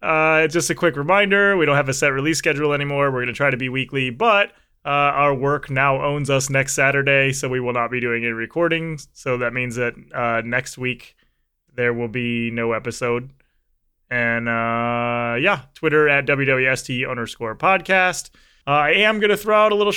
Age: 20-39